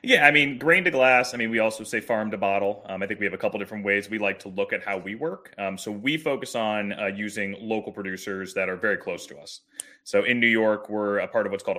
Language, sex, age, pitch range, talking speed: English, male, 20-39, 95-110 Hz, 285 wpm